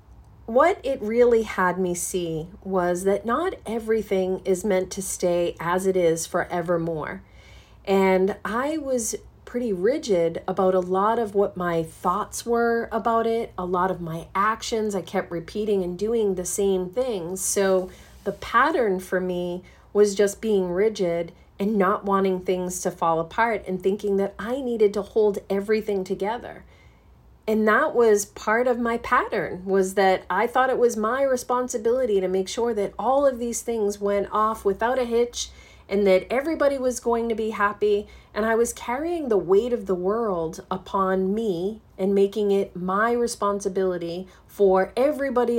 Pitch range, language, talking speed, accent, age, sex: 185-230 Hz, English, 165 wpm, American, 40-59, female